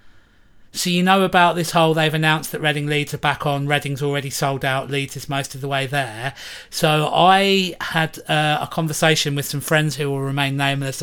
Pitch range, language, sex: 140-155 Hz, English, male